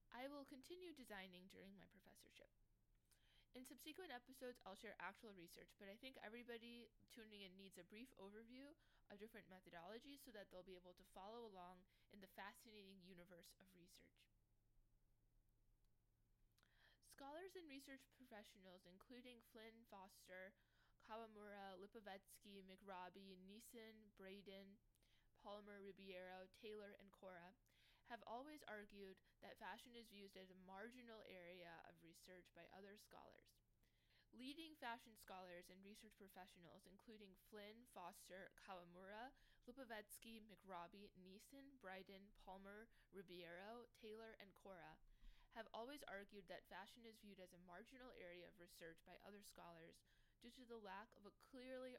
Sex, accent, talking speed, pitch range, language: female, American, 135 wpm, 185-225 Hz, English